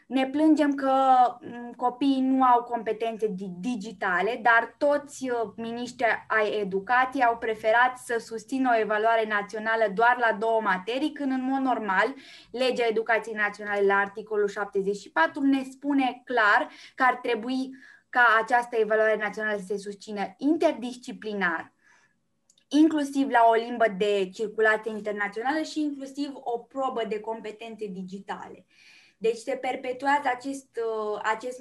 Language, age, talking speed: Romanian, 20-39, 125 wpm